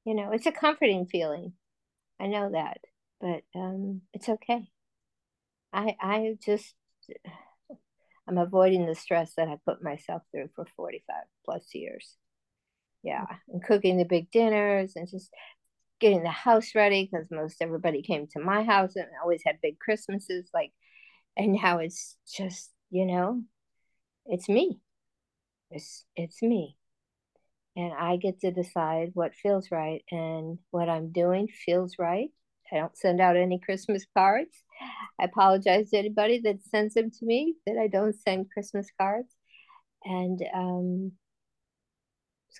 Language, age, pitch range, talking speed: English, 50-69, 180-220 Hz, 150 wpm